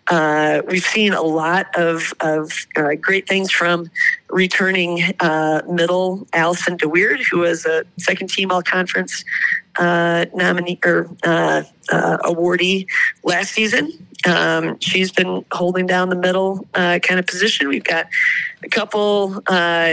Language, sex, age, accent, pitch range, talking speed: English, female, 40-59, American, 170-200 Hz, 140 wpm